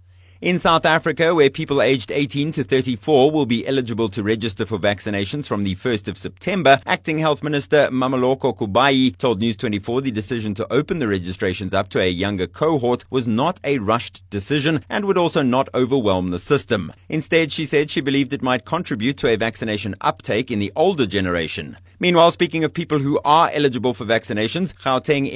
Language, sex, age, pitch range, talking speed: English, male, 30-49, 100-145 Hz, 180 wpm